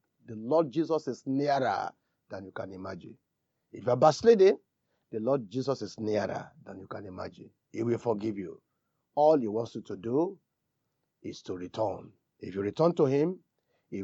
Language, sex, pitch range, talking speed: English, male, 115-165 Hz, 175 wpm